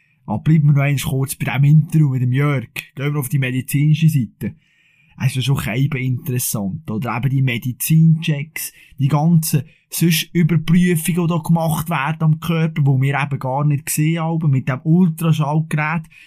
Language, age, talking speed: German, 20-39, 175 wpm